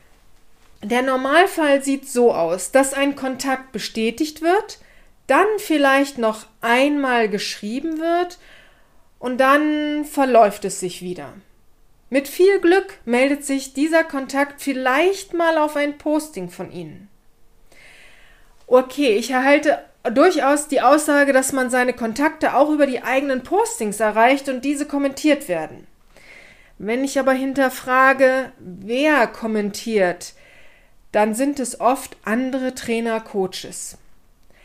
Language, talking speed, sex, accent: German, 120 wpm, female, German